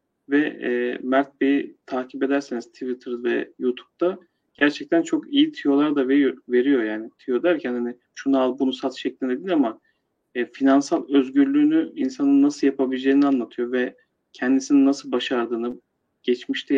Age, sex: 40-59, male